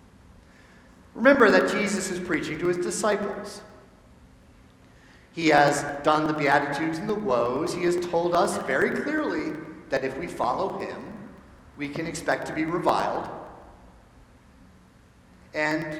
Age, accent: 50-69, American